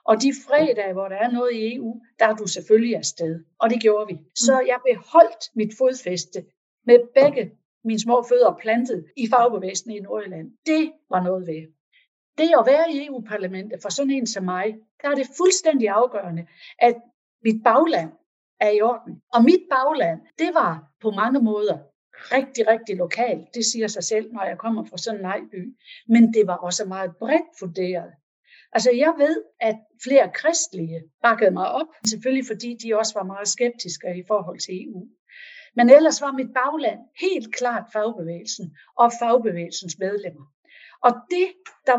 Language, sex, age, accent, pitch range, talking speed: Danish, female, 60-79, native, 195-265 Hz, 175 wpm